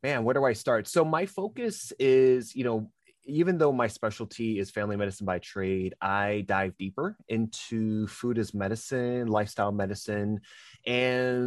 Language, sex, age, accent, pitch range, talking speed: English, male, 20-39, American, 95-115 Hz, 155 wpm